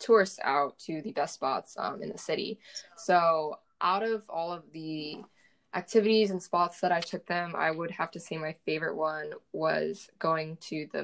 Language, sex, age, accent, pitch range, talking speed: English, female, 10-29, American, 160-200 Hz, 190 wpm